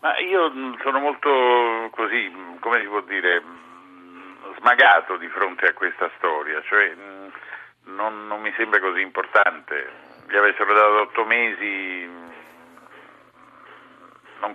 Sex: male